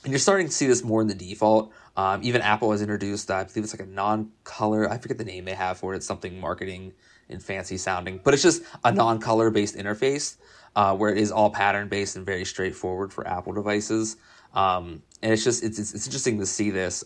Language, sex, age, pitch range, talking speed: English, male, 20-39, 95-110 Hz, 235 wpm